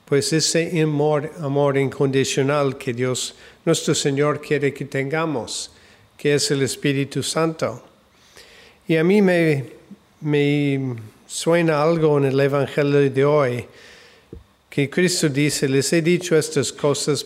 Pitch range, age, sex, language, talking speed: 130-150 Hz, 50-69, male, Spanish, 130 wpm